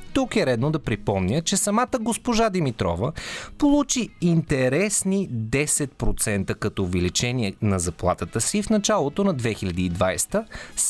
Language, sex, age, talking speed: Bulgarian, male, 30-49, 115 wpm